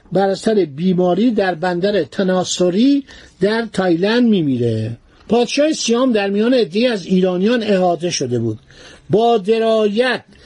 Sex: male